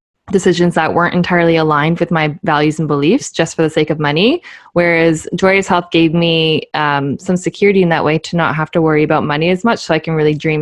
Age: 20-39